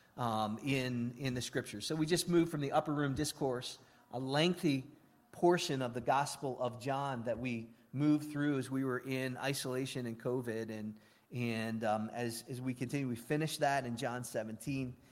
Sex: male